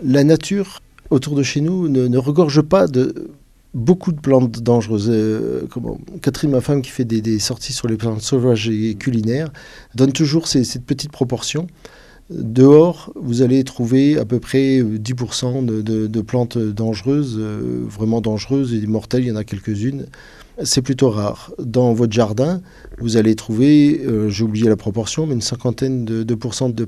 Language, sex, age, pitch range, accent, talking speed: French, male, 40-59, 110-135 Hz, French, 175 wpm